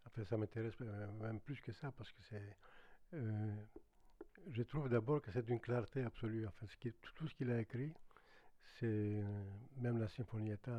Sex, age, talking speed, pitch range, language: male, 60-79, 180 wpm, 110-140 Hz, French